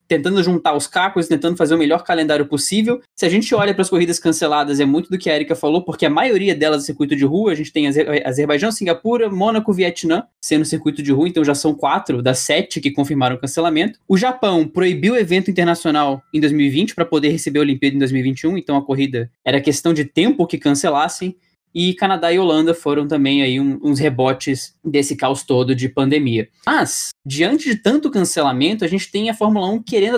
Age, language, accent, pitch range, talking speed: 20-39, Portuguese, Brazilian, 145-185 Hz, 210 wpm